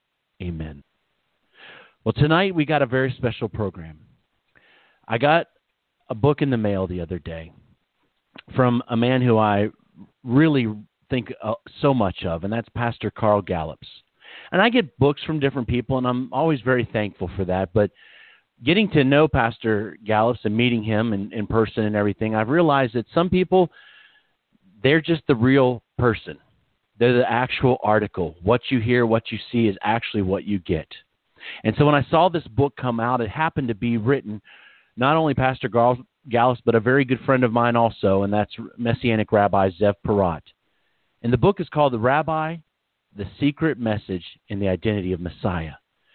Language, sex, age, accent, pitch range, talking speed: English, male, 40-59, American, 105-140 Hz, 175 wpm